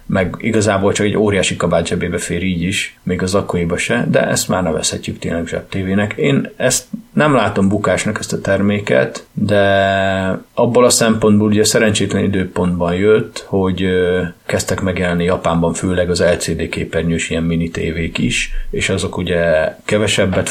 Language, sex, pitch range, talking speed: Hungarian, male, 85-100 Hz, 160 wpm